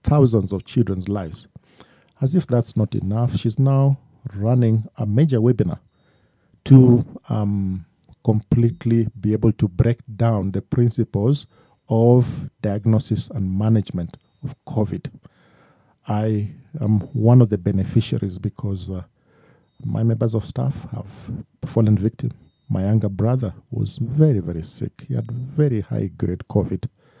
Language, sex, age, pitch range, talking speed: English, male, 50-69, 100-130 Hz, 130 wpm